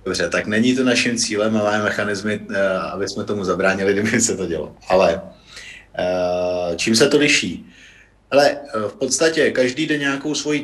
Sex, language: male, Czech